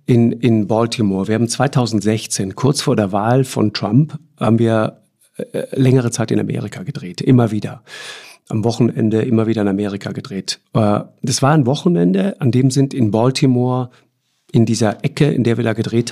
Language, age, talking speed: German, 50-69, 170 wpm